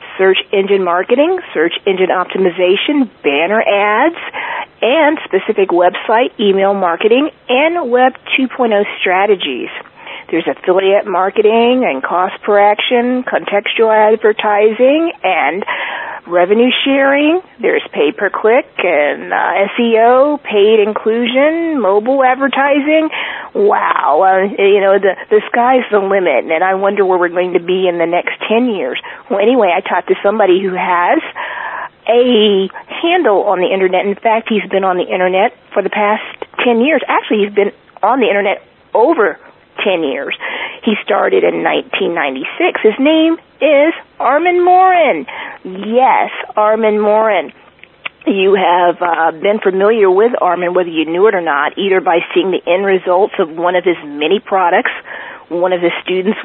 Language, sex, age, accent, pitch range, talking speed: English, female, 40-59, American, 190-265 Hz, 145 wpm